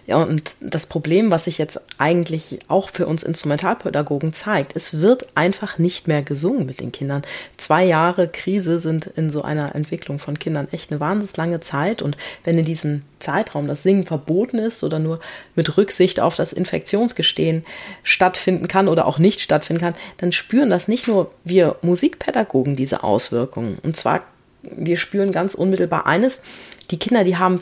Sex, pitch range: female, 155-185 Hz